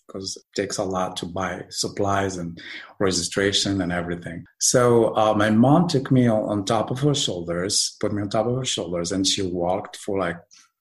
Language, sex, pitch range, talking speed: English, male, 95-115 Hz, 195 wpm